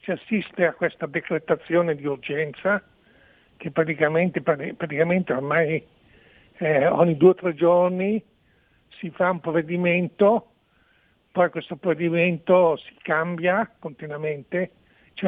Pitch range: 160-185 Hz